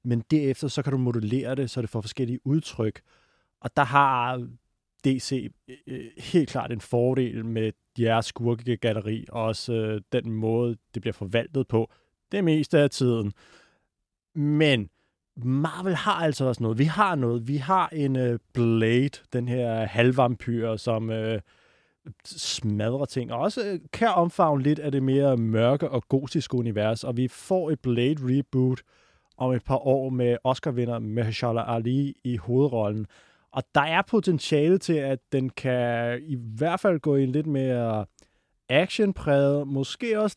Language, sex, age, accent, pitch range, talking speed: Danish, male, 30-49, native, 120-155 Hz, 150 wpm